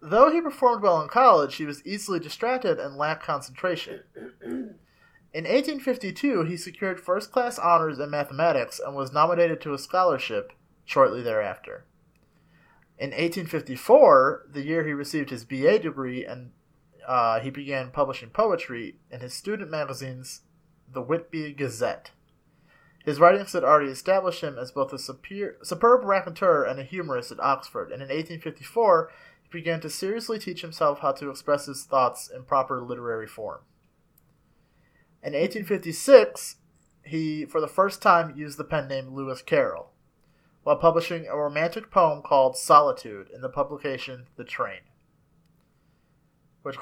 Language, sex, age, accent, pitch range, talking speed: English, male, 30-49, American, 140-195 Hz, 140 wpm